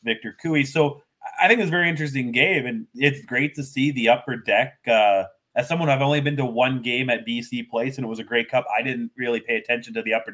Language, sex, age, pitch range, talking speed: English, male, 20-39, 115-145 Hz, 250 wpm